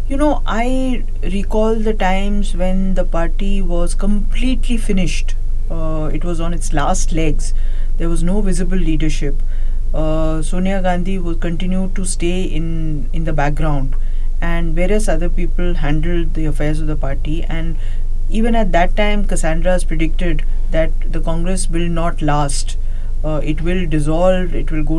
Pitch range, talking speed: 145-185 Hz, 155 wpm